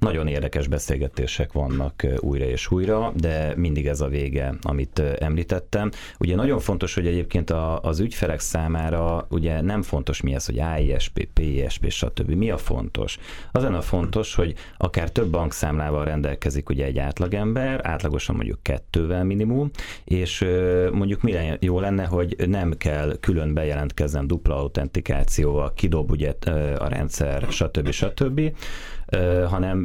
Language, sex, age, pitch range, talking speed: Hungarian, male, 30-49, 75-90 Hz, 135 wpm